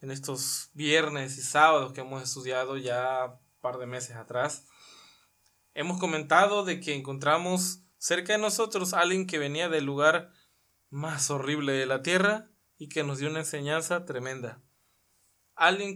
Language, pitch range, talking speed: Spanish, 130-195 Hz, 150 wpm